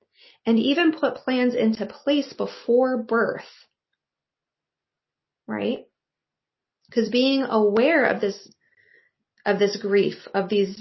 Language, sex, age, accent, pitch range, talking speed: English, female, 20-39, American, 190-240 Hz, 105 wpm